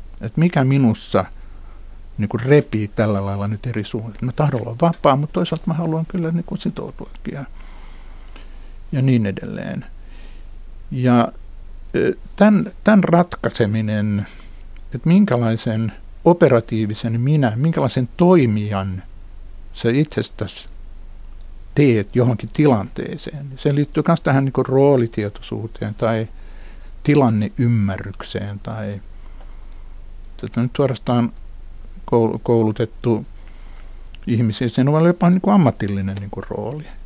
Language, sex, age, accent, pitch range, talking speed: Finnish, male, 60-79, native, 90-145 Hz, 100 wpm